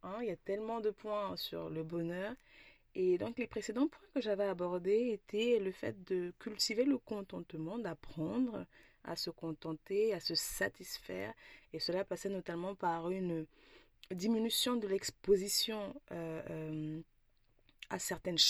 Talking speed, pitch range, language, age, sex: 145 wpm, 175-225 Hz, French, 20-39, female